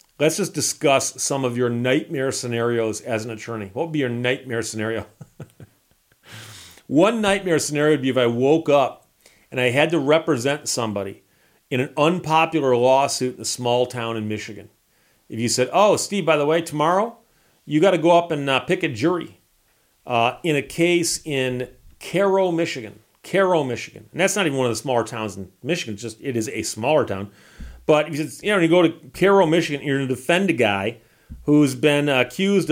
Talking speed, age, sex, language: 190 wpm, 40-59, male, English